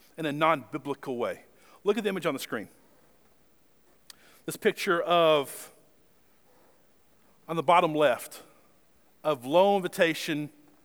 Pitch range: 145-185 Hz